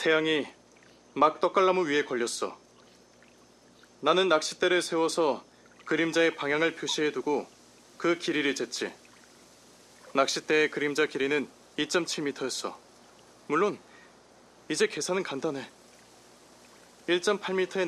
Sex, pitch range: male, 120-170 Hz